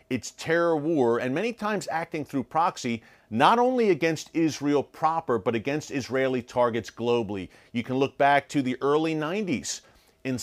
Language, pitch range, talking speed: English, 120-145 Hz, 160 wpm